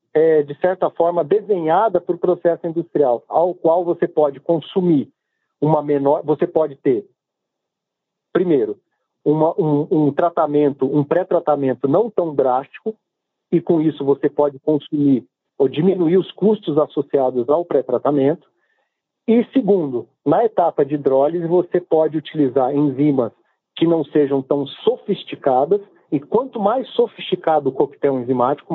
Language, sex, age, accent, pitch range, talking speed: Portuguese, male, 50-69, Brazilian, 145-195 Hz, 130 wpm